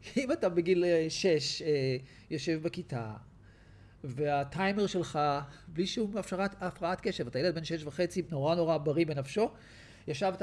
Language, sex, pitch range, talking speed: Hebrew, male, 125-175 Hz, 125 wpm